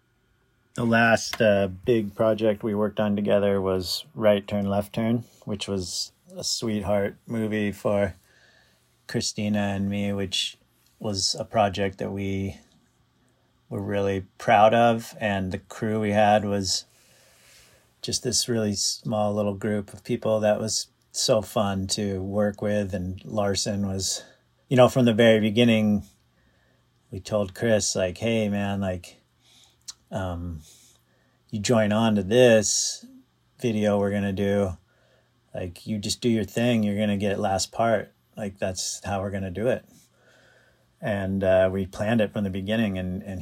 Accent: American